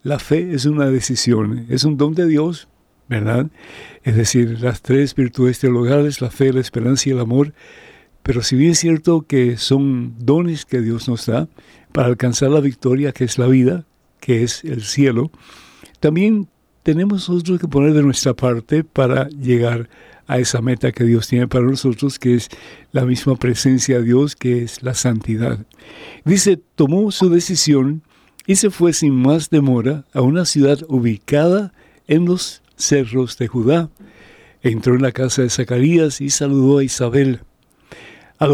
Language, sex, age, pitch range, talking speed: Spanish, male, 60-79, 125-155 Hz, 165 wpm